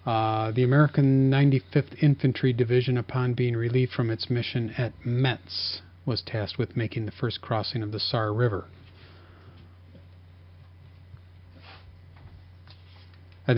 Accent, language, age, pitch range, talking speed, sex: American, English, 40-59, 90-120 Hz, 115 wpm, male